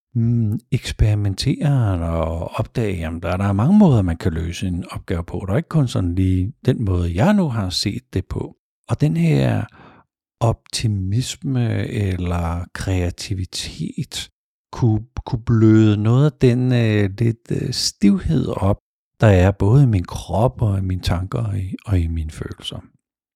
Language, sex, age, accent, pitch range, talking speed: Danish, male, 50-69, native, 90-115 Hz, 145 wpm